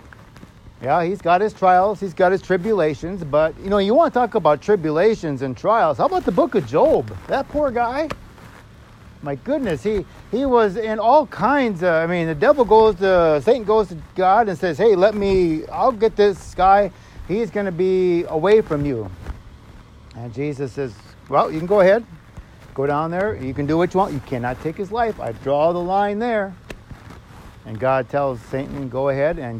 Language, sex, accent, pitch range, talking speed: English, male, American, 145-220 Hz, 200 wpm